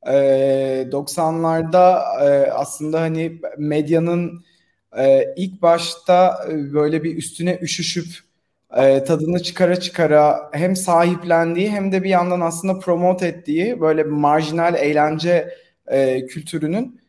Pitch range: 145-185 Hz